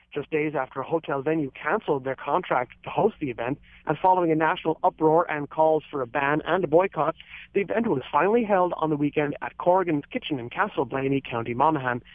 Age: 30-49